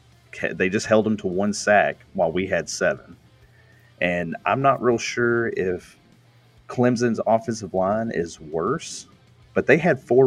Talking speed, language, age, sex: 150 wpm, English, 30-49, male